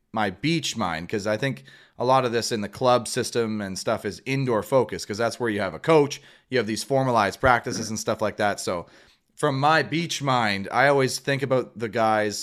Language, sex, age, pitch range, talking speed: English, male, 30-49, 115-160 Hz, 220 wpm